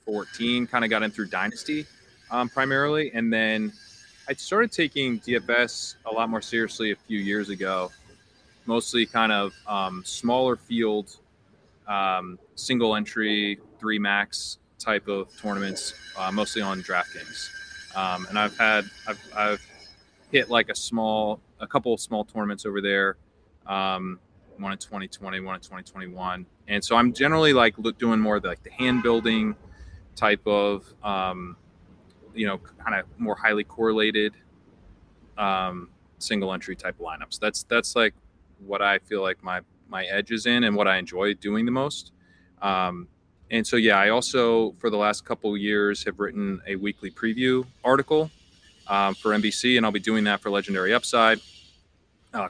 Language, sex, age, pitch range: English, male, 20-39, 95-115 Hz